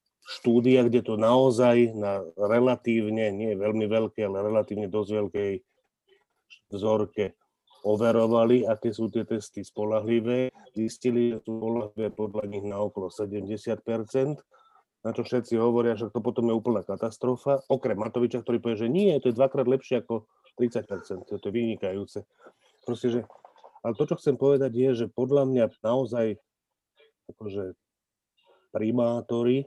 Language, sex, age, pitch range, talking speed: Slovak, male, 30-49, 105-125 Hz, 140 wpm